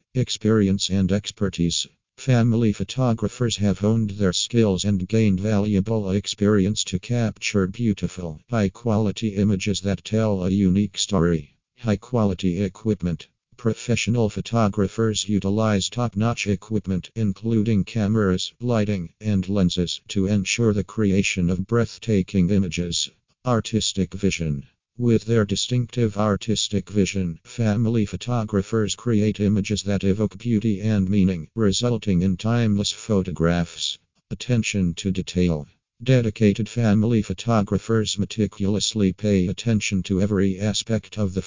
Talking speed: 110 wpm